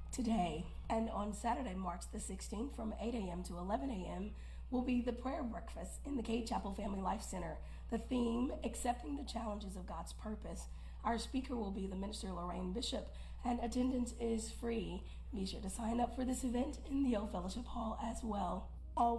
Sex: female